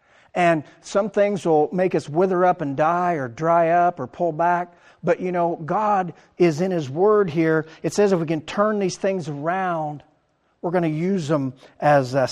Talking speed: 200 wpm